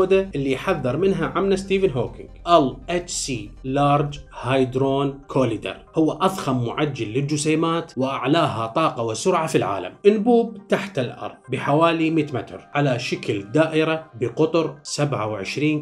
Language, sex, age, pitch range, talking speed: Arabic, male, 30-49, 130-185 Hz, 120 wpm